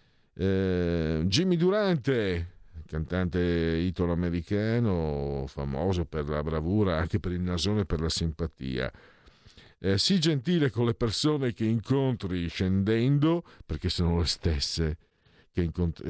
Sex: male